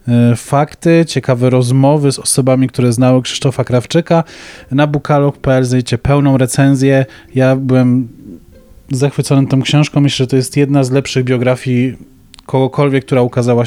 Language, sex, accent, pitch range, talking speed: Polish, male, native, 125-145 Hz, 130 wpm